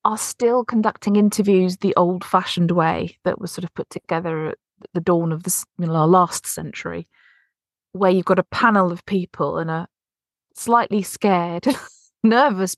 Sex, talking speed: female, 165 wpm